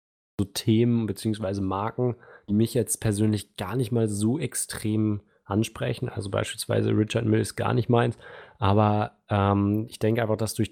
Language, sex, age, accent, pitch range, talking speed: German, male, 20-39, German, 105-115 Hz, 160 wpm